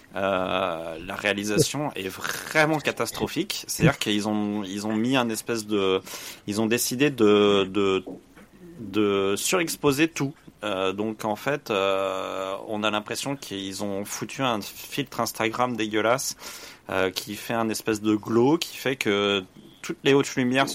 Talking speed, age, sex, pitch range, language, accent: 155 wpm, 30-49, male, 100-125 Hz, French, French